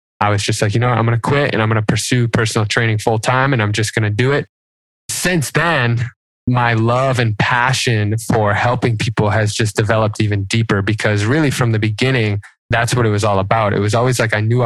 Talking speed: 240 wpm